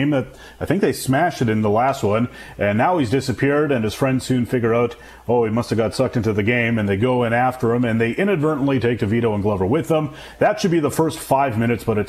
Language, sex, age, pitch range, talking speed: English, male, 30-49, 115-150 Hz, 260 wpm